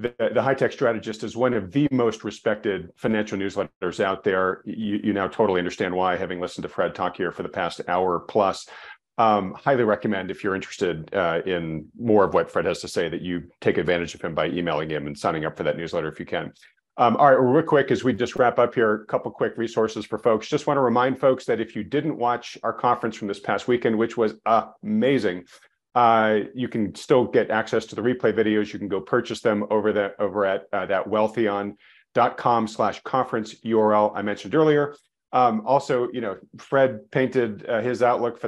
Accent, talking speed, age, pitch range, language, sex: American, 215 wpm, 40-59, 105-125 Hz, English, male